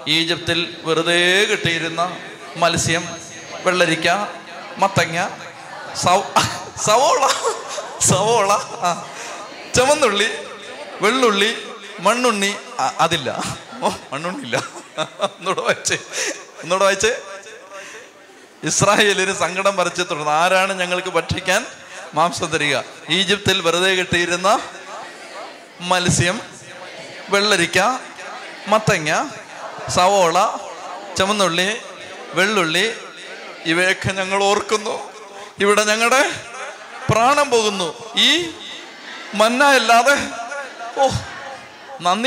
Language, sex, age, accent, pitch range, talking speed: Malayalam, male, 30-49, native, 175-215 Hz, 65 wpm